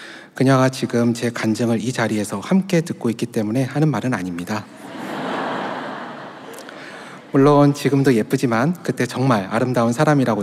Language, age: Korean, 30-49